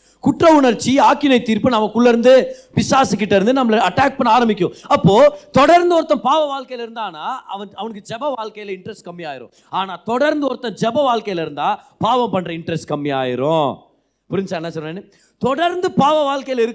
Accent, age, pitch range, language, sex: native, 30-49, 165-255 Hz, Tamil, male